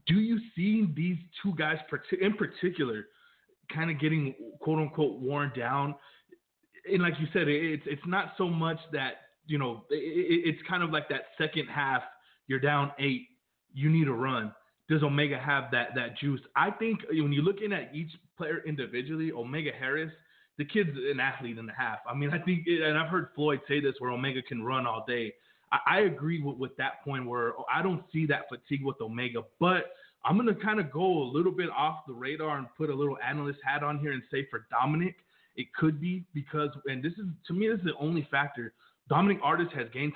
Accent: American